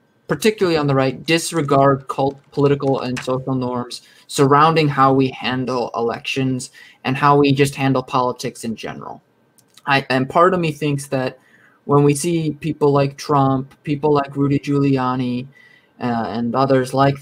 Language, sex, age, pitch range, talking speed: English, male, 20-39, 130-150 Hz, 155 wpm